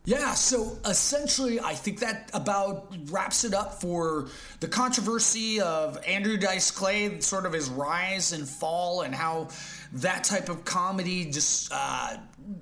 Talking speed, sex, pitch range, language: 145 wpm, male, 155-200 Hz, English